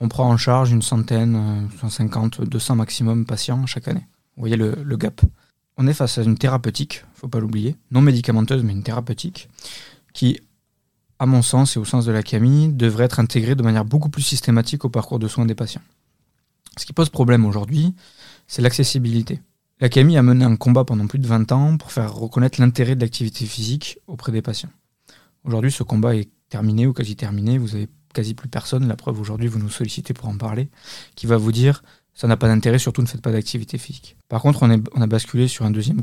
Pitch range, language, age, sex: 115-130 Hz, French, 20-39, male